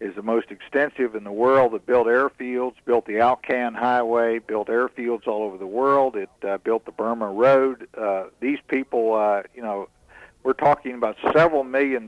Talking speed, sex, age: 185 wpm, male, 60-79